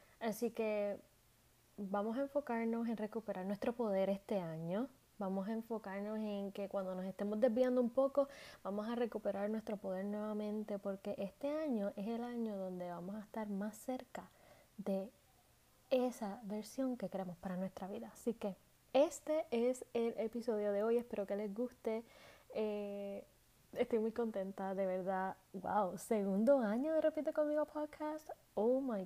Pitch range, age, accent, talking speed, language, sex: 195-240 Hz, 10-29, American, 155 wpm, Spanish, female